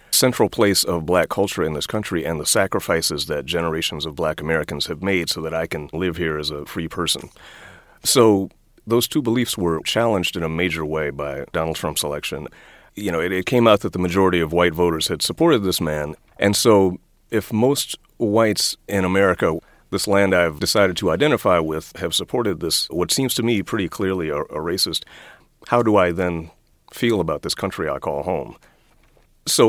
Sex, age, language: male, 30-49, English